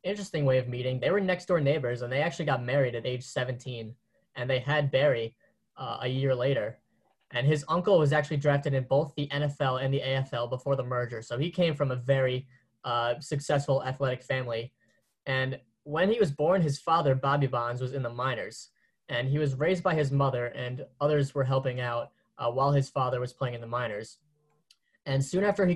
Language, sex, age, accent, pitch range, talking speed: English, male, 10-29, American, 125-150 Hz, 205 wpm